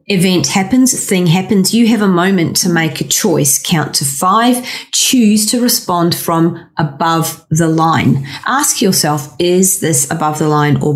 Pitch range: 160-200 Hz